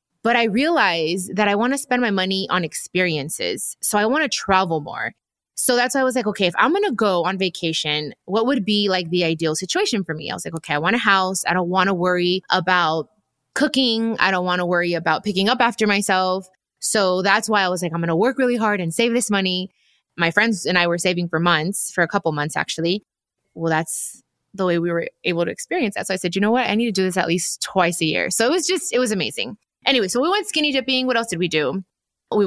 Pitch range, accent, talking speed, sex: 175-220 Hz, American, 260 wpm, female